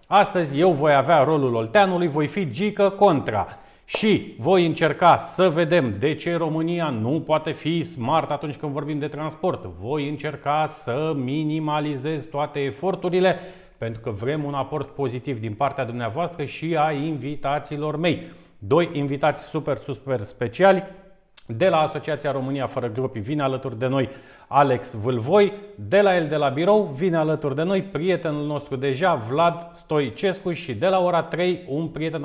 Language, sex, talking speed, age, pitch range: Romanian, male, 160 wpm, 30-49, 135-165 Hz